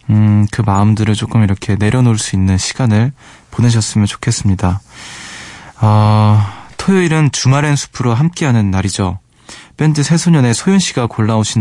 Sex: male